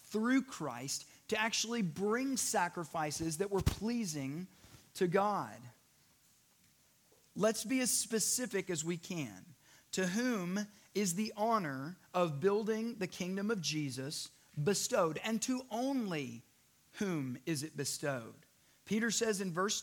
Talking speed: 125 wpm